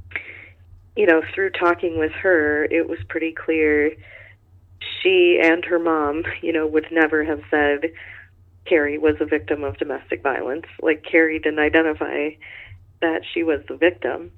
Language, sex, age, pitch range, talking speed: English, female, 30-49, 145-165 Hz, 150 wpm